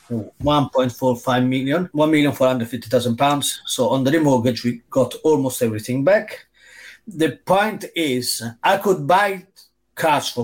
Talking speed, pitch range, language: 120 wpm, 125-180 Hz, English